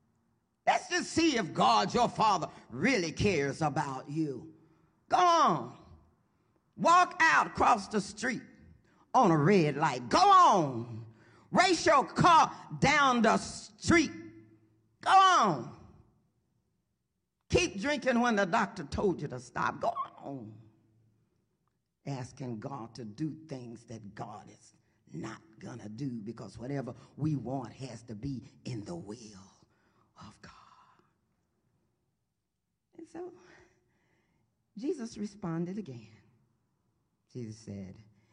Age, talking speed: 40-59, 115 wpm